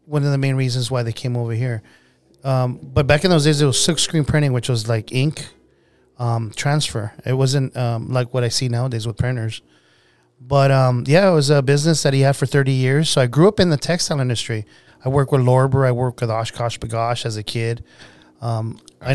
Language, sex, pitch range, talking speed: English, male, 120-145 Hz, 225 wpm